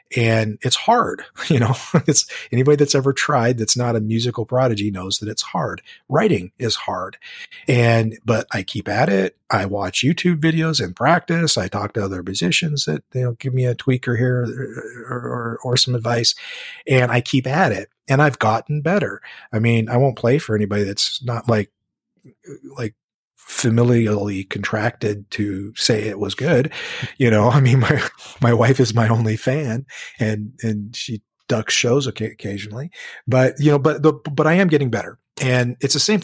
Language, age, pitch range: English, 40-59, 110-135 Hz